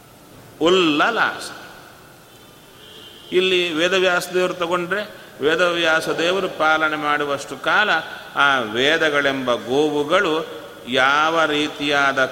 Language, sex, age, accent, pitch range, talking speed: Kannada, male, 30-49, native, 140-165 Hz, 70 wpm